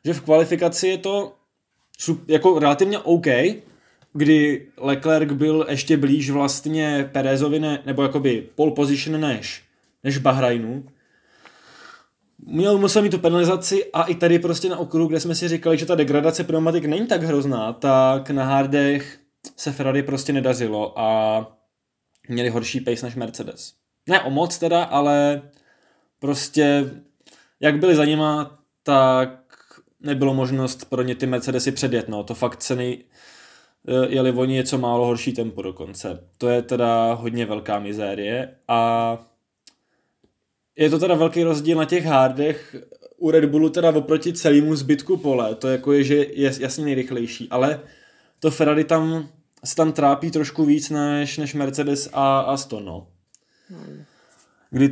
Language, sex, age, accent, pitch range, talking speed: Czech, male, 20-39, native, 130-155 Hz, 145 wpm